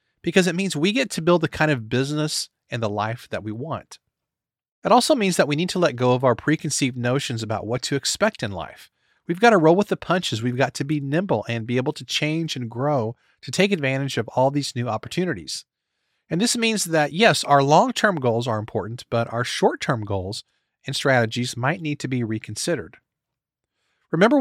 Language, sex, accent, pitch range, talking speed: English, male, American, 120-170 Hz, 215 wpm